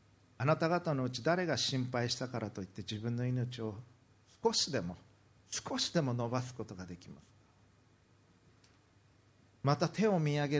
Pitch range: 110-145 Hz